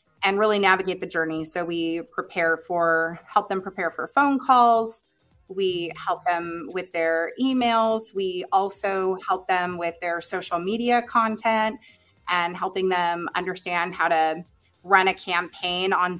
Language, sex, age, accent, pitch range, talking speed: English, female, 30-49, American, 165-195 Hz, 150 wpm